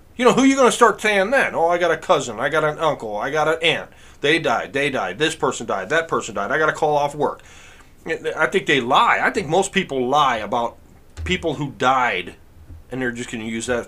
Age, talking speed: 40-59, 240 wpm